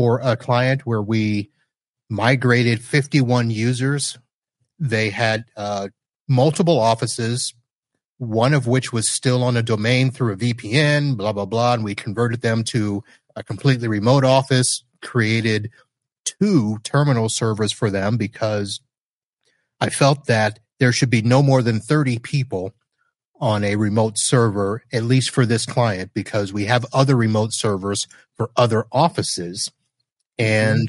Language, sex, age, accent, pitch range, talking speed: English, male, 30-49, American, 110-130 Hz, 140 wpm